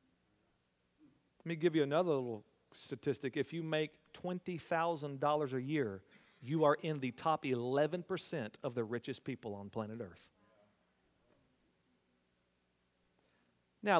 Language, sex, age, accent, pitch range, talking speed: English, male, 40-59, American, 120-155 Hz, 115 wpm